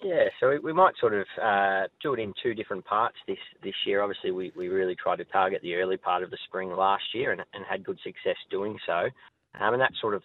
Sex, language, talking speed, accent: male, English, 250 wpm, Australian